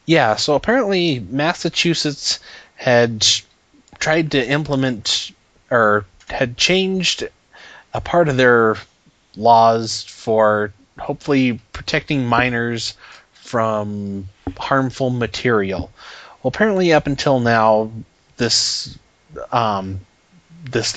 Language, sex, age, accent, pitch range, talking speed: English, male, 30-49, American, 110-130 Hz, 90 wpm